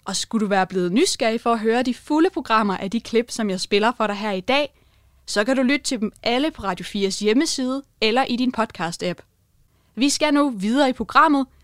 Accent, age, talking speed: native, 20-39, 225 wpm